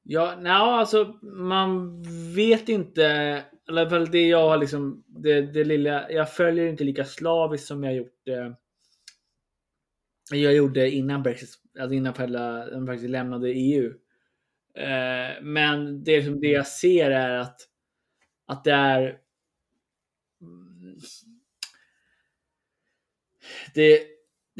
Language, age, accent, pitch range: Swedish, 20-39, native, 135-160 Hz